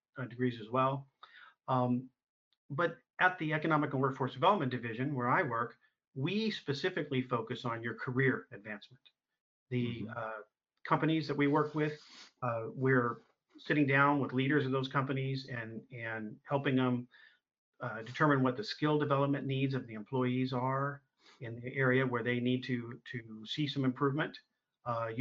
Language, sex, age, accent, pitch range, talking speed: English, male, 40-59, American, 125-145 Hz, 155 wpm